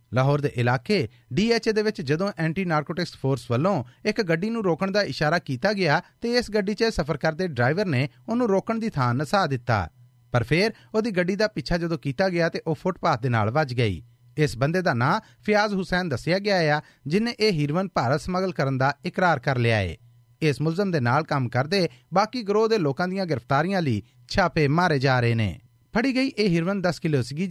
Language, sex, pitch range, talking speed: Punjabi, male, 135-190 Hz, 205 wpm